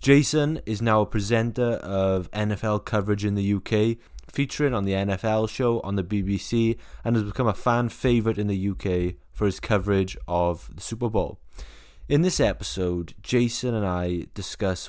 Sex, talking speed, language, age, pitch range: male, 170 wpm, English, 20-39, 85-105 Hz